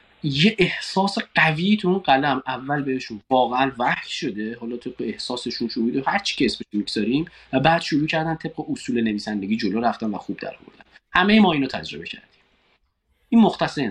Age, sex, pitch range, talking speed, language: 30-49, male, 125-170 Hz, 170 wpm, Persian